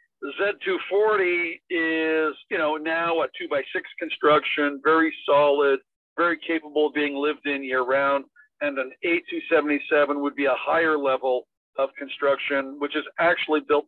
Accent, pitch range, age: American, 135-160 Hz, 60-79